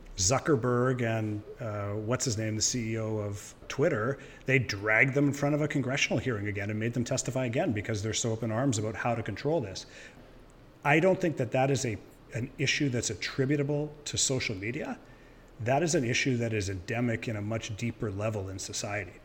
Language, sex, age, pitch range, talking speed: English, male, 40-59, 110-140 Hz, 195 wpm